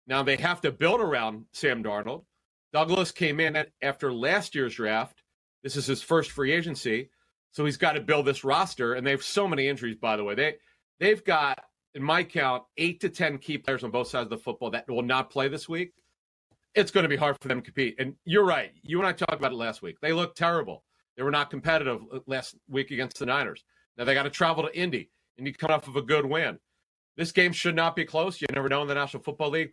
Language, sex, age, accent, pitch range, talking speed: English, male, 40-59, American, 135-170 Hz, 245 wpm